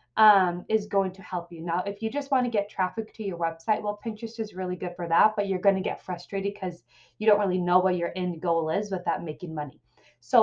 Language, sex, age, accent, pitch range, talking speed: English, female, 20-39, American, 175-225 Hz, 255 wpm